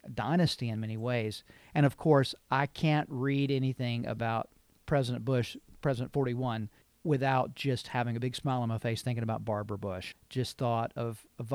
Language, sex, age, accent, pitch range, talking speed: English, male, 40-59, American, 115-145 Hz, 170 wpm